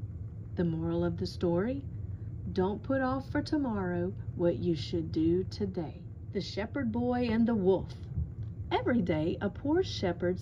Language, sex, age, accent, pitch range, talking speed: English, female, 40-59, American, 155-225 Hz, 150 wpm